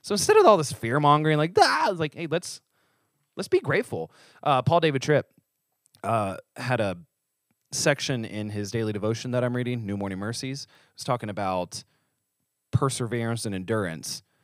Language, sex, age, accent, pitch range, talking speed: English, male, 20-39, American, 105-140 Hz, 165 wpm